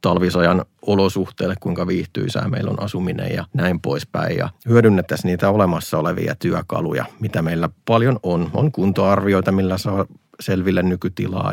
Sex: male